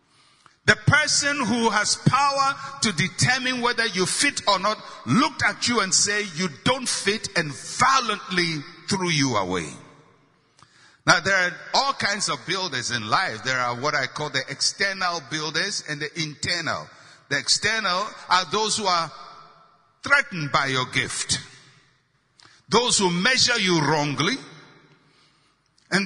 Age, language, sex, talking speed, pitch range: 60-79, English, male, 140 wpm, 150-210 Hz